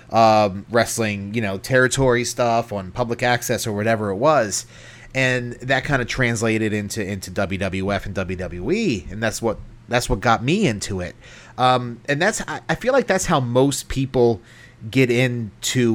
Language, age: English, 30-49